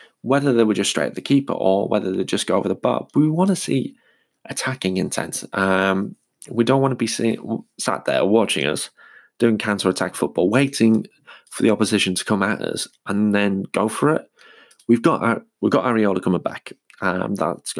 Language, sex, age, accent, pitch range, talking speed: English, male, 20-39, British, 95-115 Hz, 200 wpm